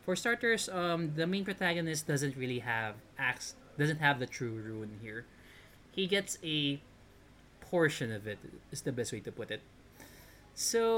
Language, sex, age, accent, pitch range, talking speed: Filipino, male, 20-39, native, 125-185 Hz, 165 wpm